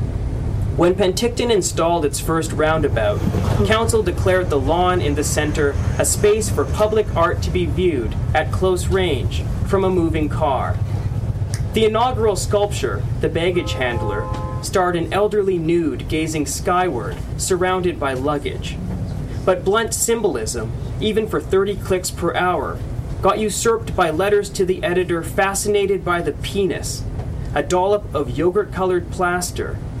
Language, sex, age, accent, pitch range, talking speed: English, male, 30-49, American, 115-190 Hz, 135 wpm